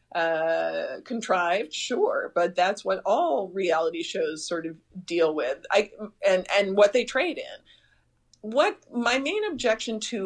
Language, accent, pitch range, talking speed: English, American, 170-215 Hz, 145 wpm